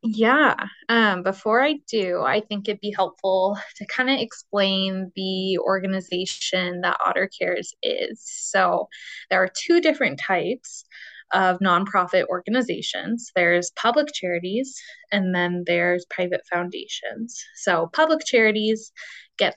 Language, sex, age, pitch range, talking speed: English, female, 20-39, 180-230 Hz, 125 wpm